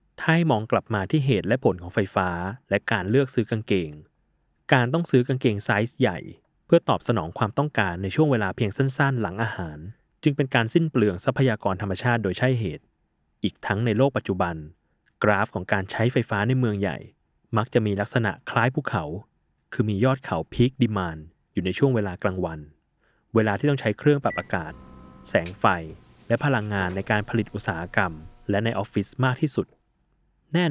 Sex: male